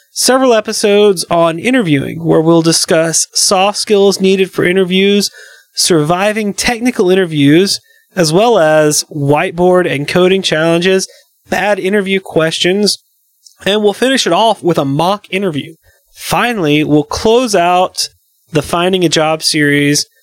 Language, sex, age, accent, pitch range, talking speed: English, male, 30-49, American, 160-210 Hz, 130 wpm